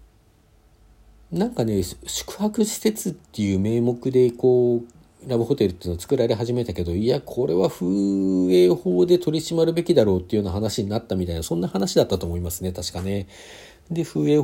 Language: Japanese